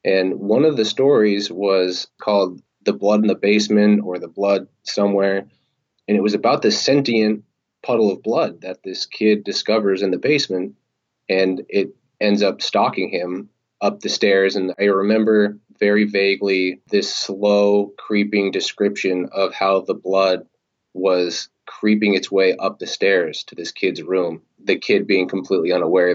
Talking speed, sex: 160 wpm, male